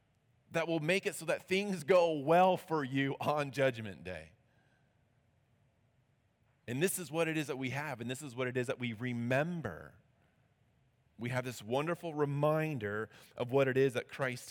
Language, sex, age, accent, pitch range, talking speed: English, male, 30-49, American, 115-140 Hz, 180 wpm